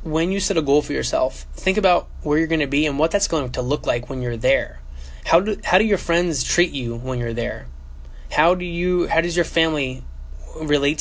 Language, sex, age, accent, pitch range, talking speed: English, male, 20-39, American, 120-165 Hz, 235 wpm